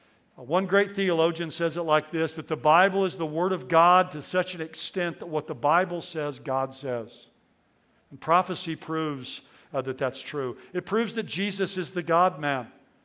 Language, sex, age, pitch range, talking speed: English, male, 50-69, 145-180 Hz, 190 wpm